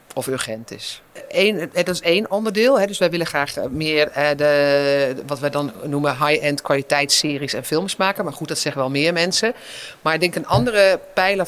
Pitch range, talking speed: 140-175 Hz, 185 wpm